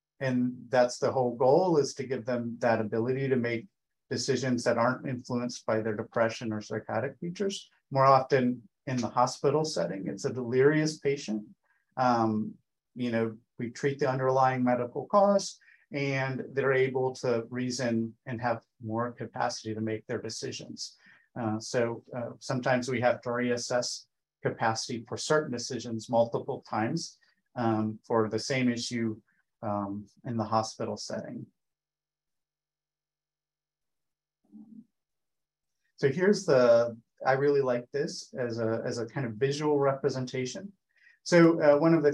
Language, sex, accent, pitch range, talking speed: English, male, American, 115-140 Hz, 140 wpm